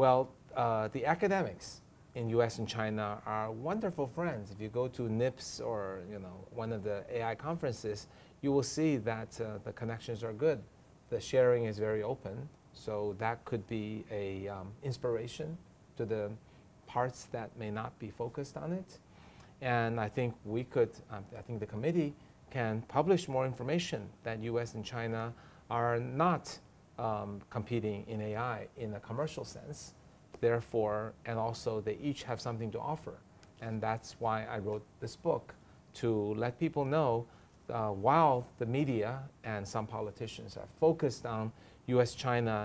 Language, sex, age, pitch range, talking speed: English, male, 30-49, 110-125 Hz, 160 wpm